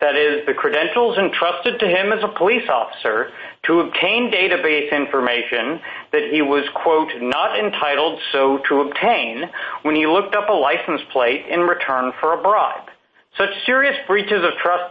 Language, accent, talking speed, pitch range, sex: English, American, 165 wpm, 145-210 Hz, male